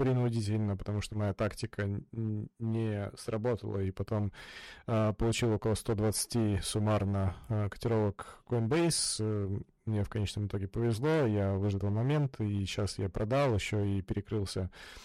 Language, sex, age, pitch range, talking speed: Russian, male, 20-39, 100-115 Hz, 130 wpm